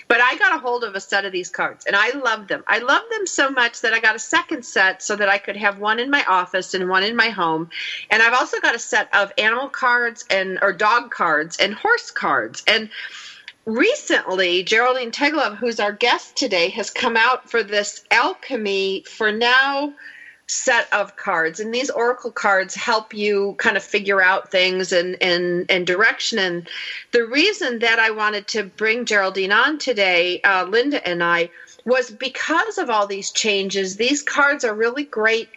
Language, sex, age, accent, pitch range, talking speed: English, female, 40-59, American, 200-260 Hz, 195 wpm